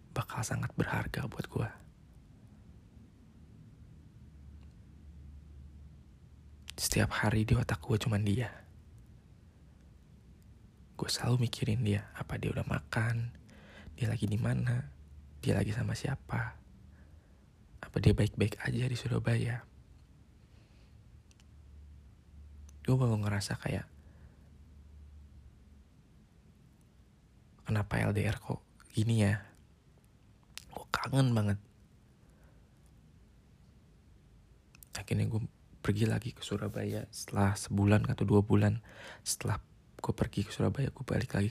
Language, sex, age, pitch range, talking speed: Malay, male, 20-39, 80-115 Hz, 95 wpm